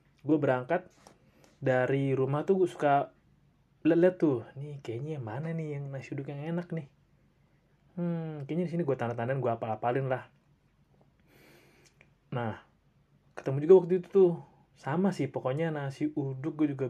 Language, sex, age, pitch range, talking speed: Indonesian, male, 30-49, 125-165 Hz, 140 wpm